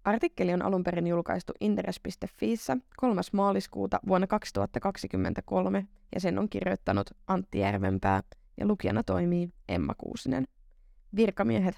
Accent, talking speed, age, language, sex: native, 110 wpm, 20-39, Finnish, female